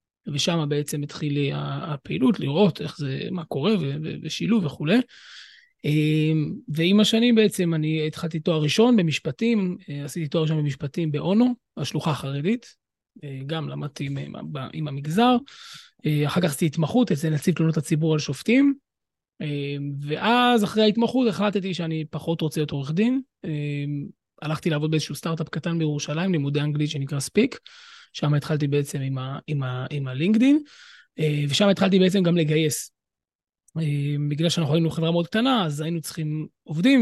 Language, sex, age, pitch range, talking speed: Hebrew, male, 20-39, 145-185 Hz, 135 wpm